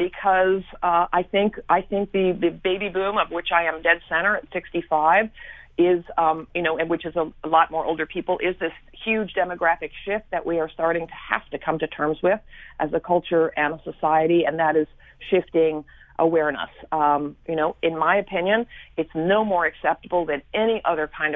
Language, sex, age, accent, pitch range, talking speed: English, female, 40-59, American, 165-210 Hz, 200 wpm